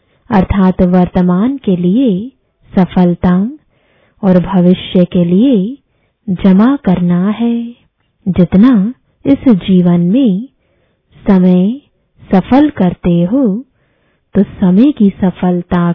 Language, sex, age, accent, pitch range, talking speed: English, female, 20-39, Indian, 180-235 Hz, 90 wpm